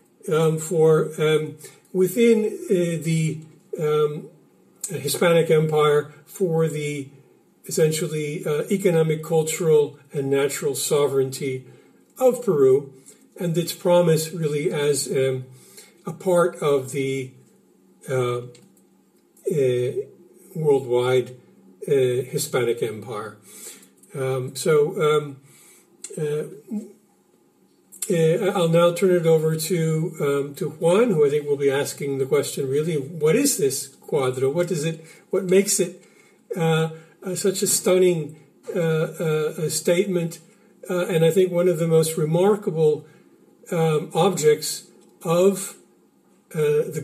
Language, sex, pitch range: English, male, 150-185 Hz